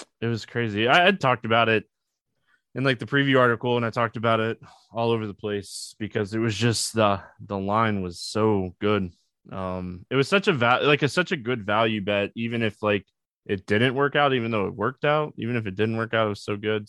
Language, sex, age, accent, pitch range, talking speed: English, male, 20-39, American, 105-140 Hz, 240 wpm